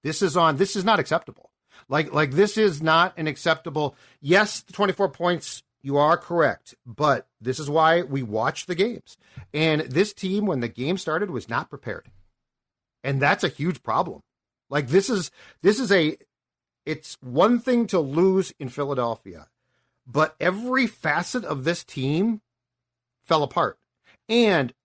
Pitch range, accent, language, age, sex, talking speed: 130-180 Hz, American, English, 40-59, male, 160 wpm